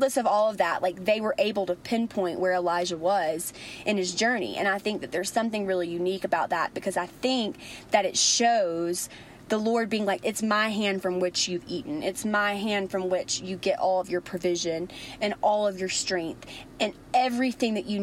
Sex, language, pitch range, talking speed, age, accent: female, English, 185-235 Hz, 210 wpm, 20-39, American